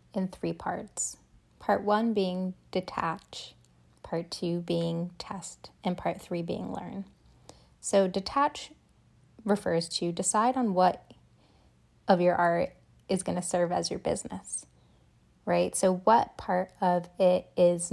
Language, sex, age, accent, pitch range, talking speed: English, female, 20-39, American, 170-200 Hz, 135 wpm